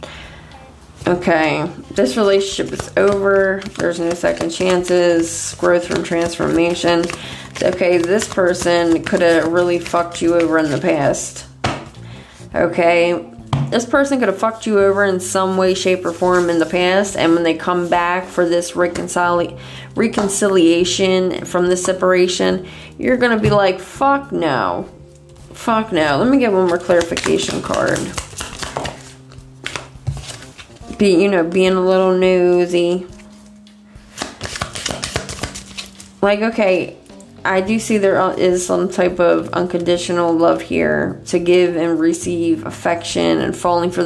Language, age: English, 20-39